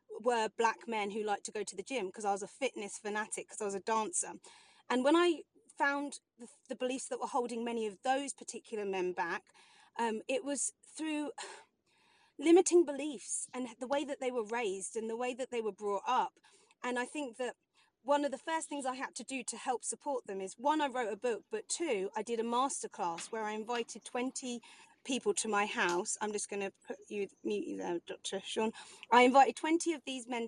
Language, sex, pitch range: English, female, 220-285 Hz